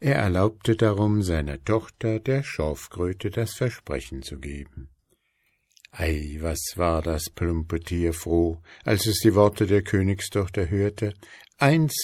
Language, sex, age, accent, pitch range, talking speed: German, male, 60-79, German, 80-115 Hz, 130 wpm